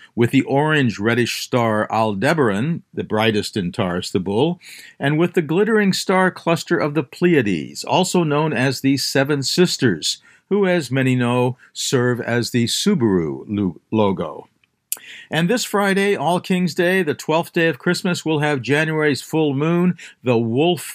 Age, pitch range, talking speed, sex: 50-69, 125-175 Hz, 155 wpm, male